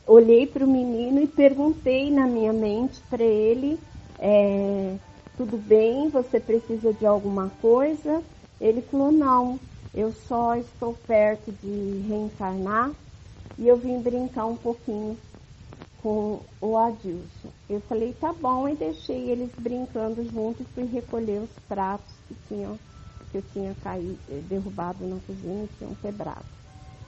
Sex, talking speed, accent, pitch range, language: female, 140 wpm, Brazilian, 195-240 Hz, Portuguese